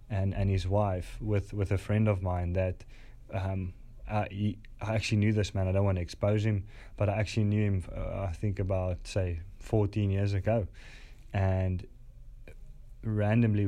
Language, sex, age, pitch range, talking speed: English, male, 20-39, 95-110 Hz, 175 wpm